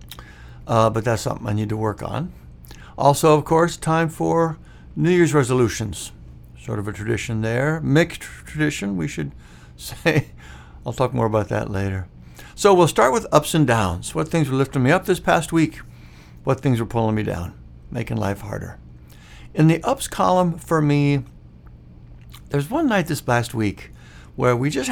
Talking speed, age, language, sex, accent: 175 wpm, 60-79, English, male, American